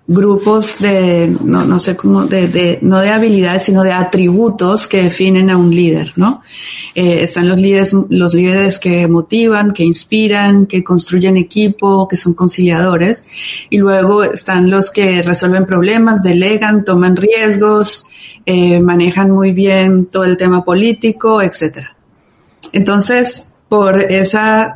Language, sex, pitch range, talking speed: Spanish, female, 180-205 Hz, 140 wpm